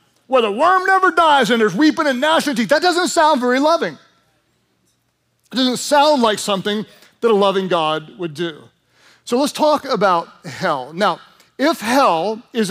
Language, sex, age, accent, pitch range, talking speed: English, male, 40-59, American, 185-270 Hz, 170 wpm